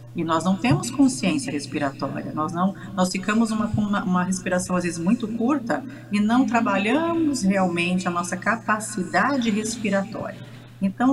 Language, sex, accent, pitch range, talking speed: Portuguese, female, Brazilian, 165-210 Hz, 145 wpm